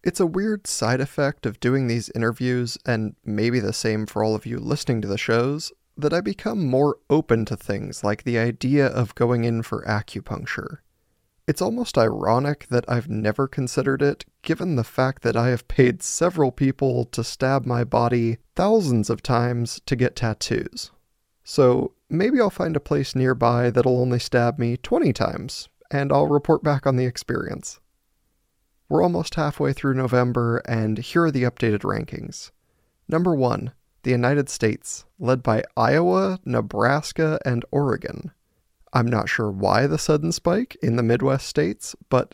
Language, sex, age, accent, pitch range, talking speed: English, male, 20-39, American, 115-145 Hz, 165 wpm